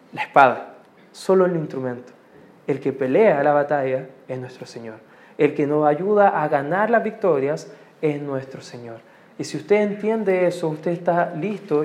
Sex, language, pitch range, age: male, Spanish, 145-195 Hz, 20-39